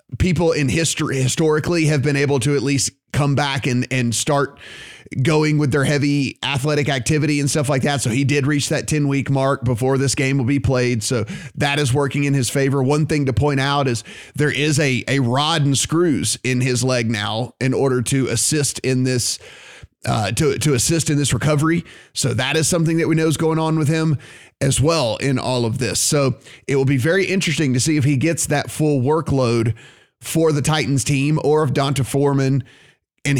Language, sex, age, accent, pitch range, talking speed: English, male, 30-49, American, 130-150 Hz, 210 wpm